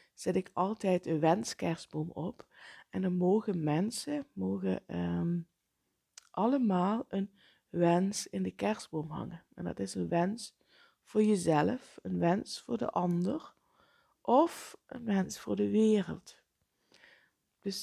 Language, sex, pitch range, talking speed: Dutch, female, 165-225 Hz, 125 wpm